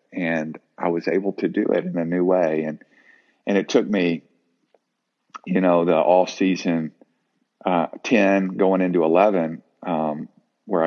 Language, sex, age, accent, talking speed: English, male, 50-69, American, 155 wpm